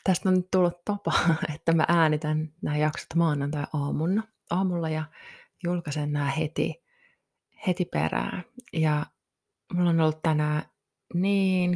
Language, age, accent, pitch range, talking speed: Finnish, 20-39, native, 155-185 Hz, 130 wpm